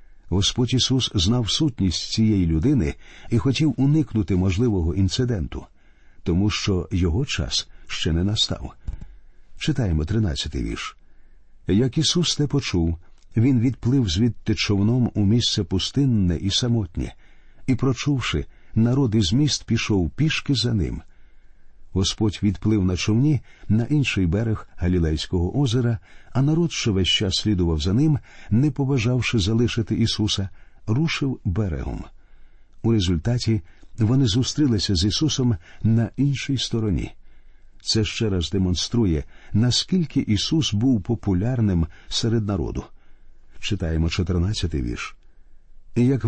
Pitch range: 90-125 Hz